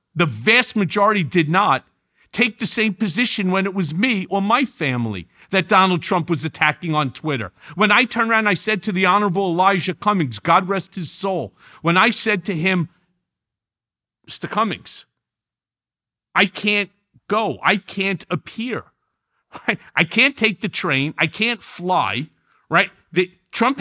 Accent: American